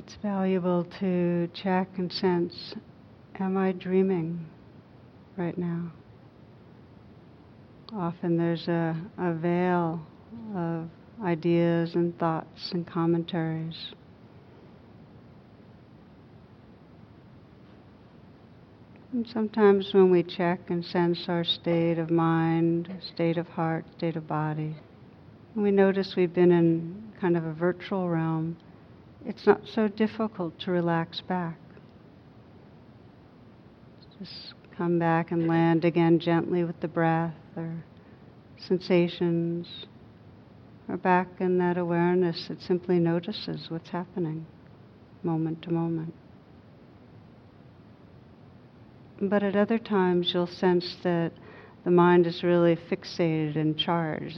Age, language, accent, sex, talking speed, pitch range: 60-79, English, American, female, 105 wpm, 165-180 Hz